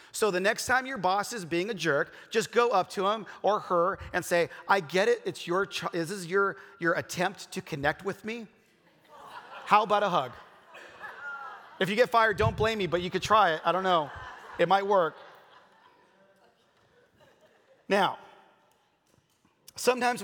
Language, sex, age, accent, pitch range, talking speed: English, male, 30-49, American, 150-210 Hz, 175 wpm